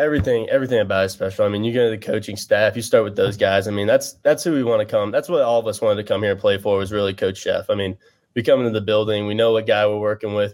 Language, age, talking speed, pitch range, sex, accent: English, 20-39, 330 wpm, 105-125 Hz, male, American